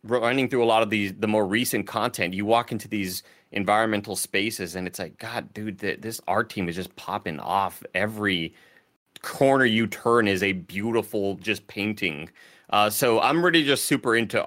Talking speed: 185 wpm